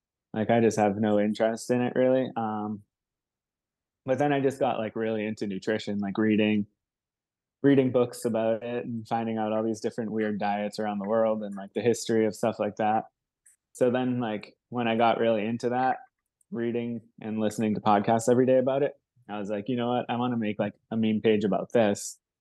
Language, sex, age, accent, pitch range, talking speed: English, male, 20-39, American, 105-120 Hz, 210 wpm